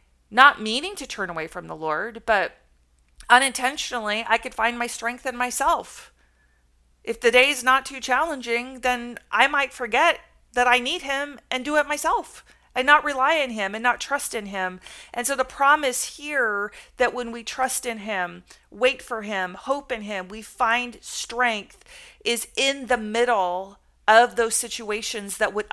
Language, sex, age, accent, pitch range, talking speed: English, female, 40-59, American, 200-245 Hz, 175 wpm